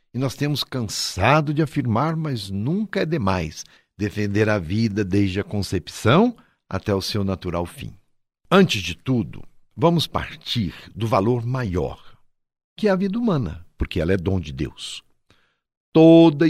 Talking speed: 150 wpm